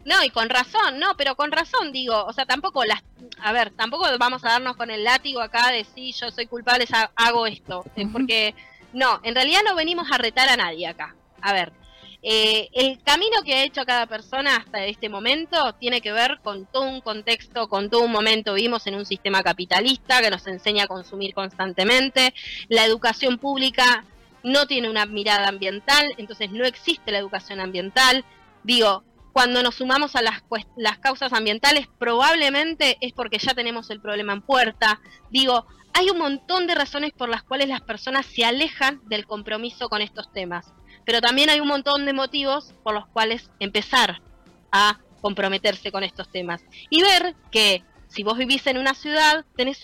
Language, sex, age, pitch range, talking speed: Spanish, female, 20-39, 215-275 Hz, 185 wpm